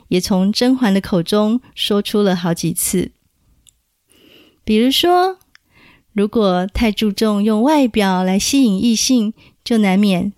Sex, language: female, Chinese